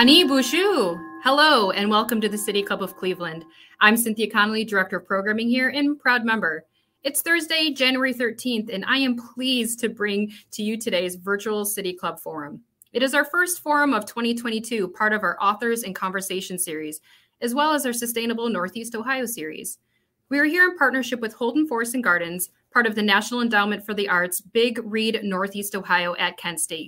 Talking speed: 190 wpm